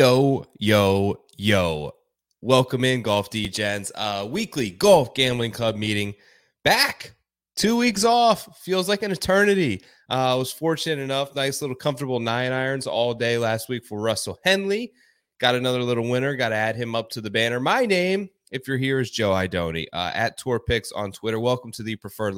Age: 20-39